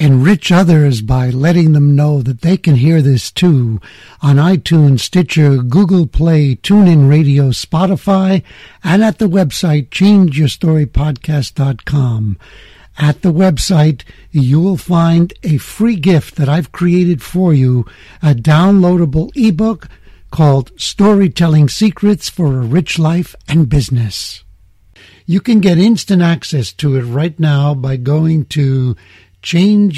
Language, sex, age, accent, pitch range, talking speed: English, male, 60-79, American, 130-175 Hz, 130 wpm